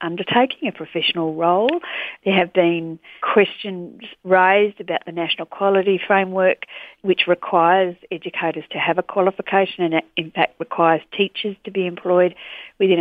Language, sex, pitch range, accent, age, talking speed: English, female, 160-195 Hz, Australian, 50-69, 140 wpm